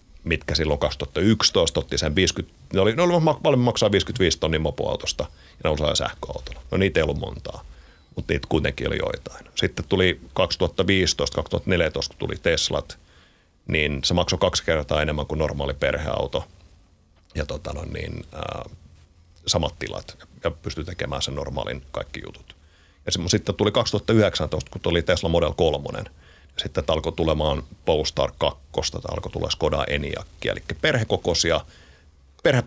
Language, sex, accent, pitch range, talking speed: Finnish, male, native, 75-95 Hz, 140 wpm